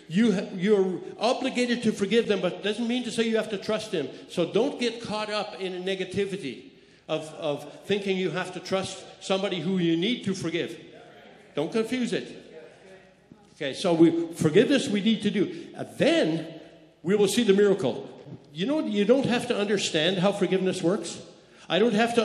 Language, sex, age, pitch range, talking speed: English, male, 60-79, 180-225 Hz, 190 wpm